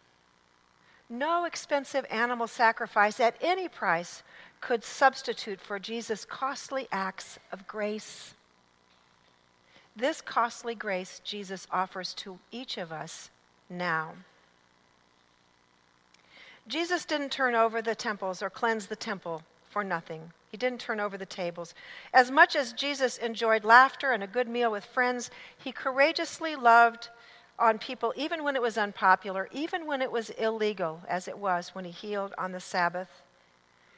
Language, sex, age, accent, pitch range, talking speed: English, female, 50-69, American, 175-250 Hz, 140 wpm